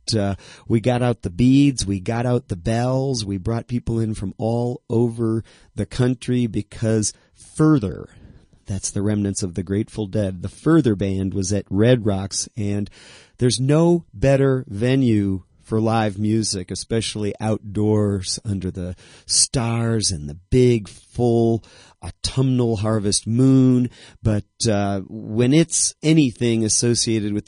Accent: American